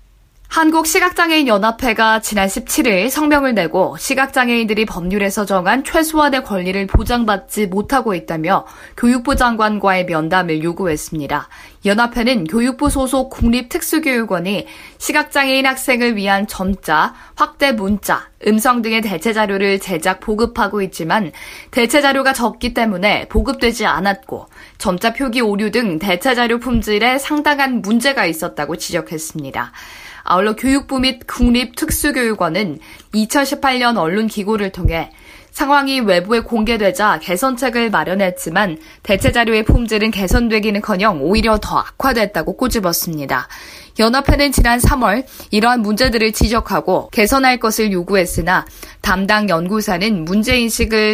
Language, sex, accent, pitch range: Korean, female, native, 195-255 Hz